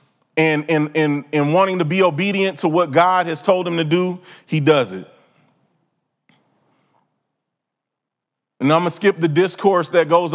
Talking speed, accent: 160 wpm, American